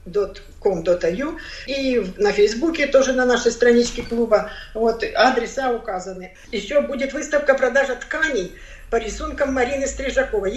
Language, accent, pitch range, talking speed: Russian, native, 215-275 Hz, 115 wpm